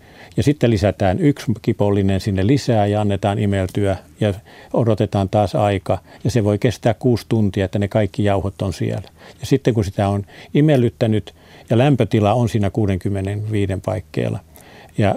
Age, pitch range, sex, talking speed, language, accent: 50-69, 95-115 Hz, male, 155 wpm, Finnish, native